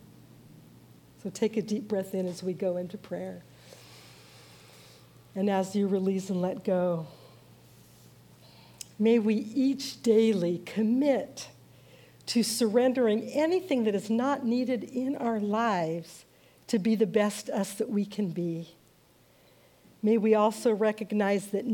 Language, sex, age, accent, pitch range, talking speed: English, female, 60-79, American, 190-230 Hz, 130 wpm